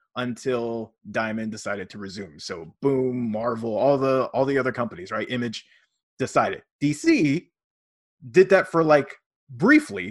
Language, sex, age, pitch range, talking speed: English, male, 30-49, 115-170 Hz, 135 wpm